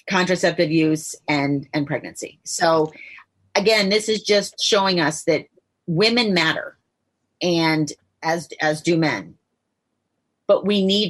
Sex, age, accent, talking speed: female, 30-49, American, 125 wpm